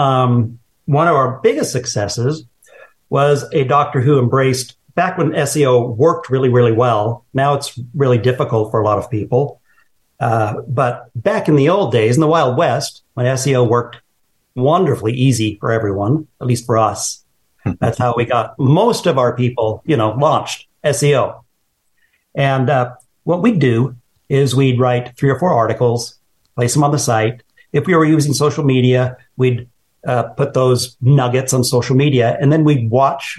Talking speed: 175 wpm